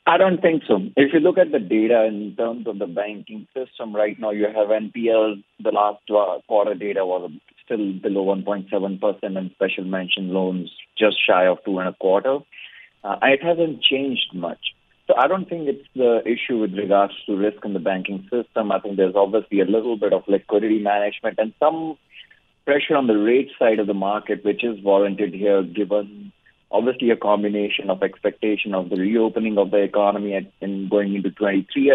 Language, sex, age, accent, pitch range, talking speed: English, male, 30-49, Indian, 95-115 Hz, 190 wpm